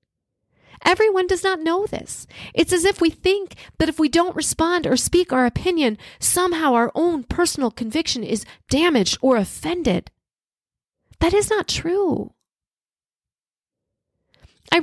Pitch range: 265-340 Hz